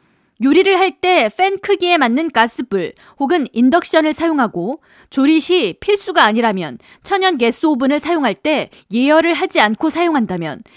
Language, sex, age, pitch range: Korean, female, 20-39, 240-340 Hz